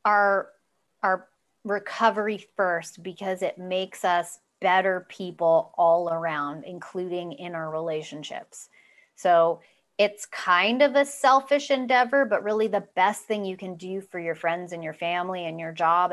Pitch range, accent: 170-205 Hz, American